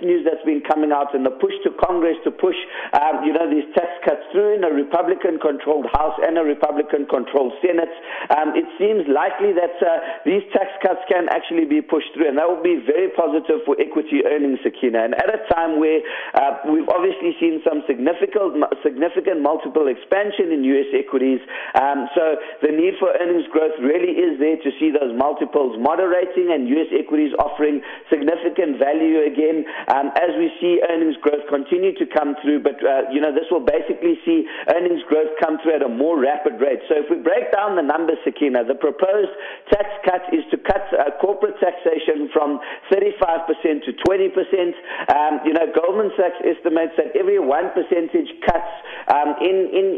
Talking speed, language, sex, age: 180 wpm, English, male, 50-69